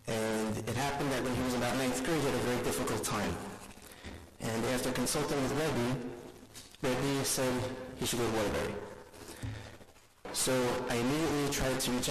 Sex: male